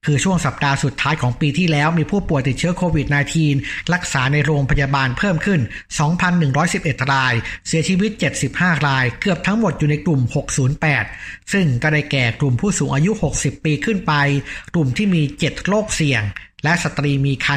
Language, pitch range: Thai, 135-165 Hz